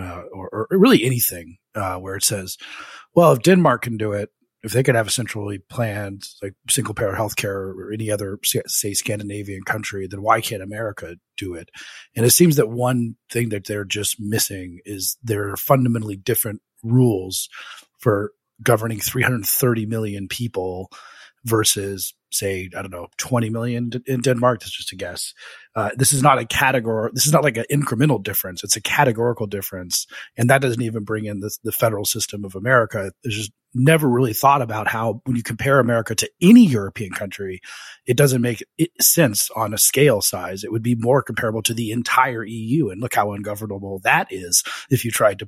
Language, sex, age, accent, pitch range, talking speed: English, male, 30-49, American, 100-125 Hz, 190 wpm